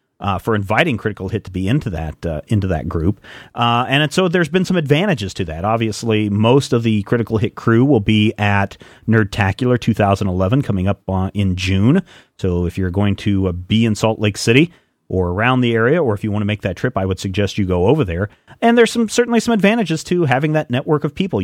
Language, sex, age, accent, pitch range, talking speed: English, male, 40-59, American, 105-135 Hz, 225 wpm